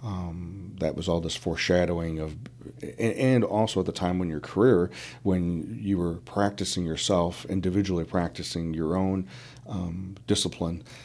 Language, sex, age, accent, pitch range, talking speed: English, male, 40-59, American, 85-105 Hz, 140 wpm